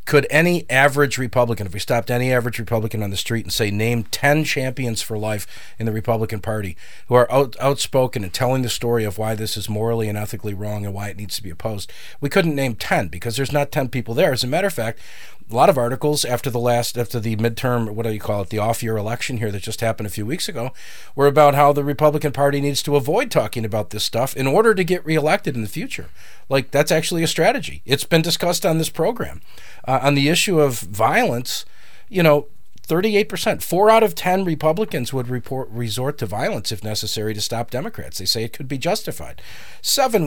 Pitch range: 110-150 Hz